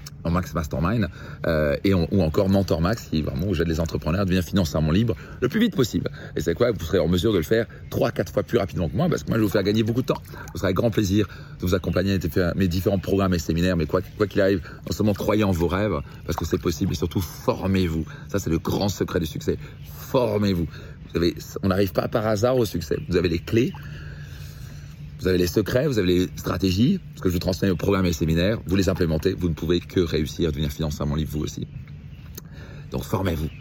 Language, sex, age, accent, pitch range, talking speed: French, male, 40-59, French, 85-105 Hz, 250 wpm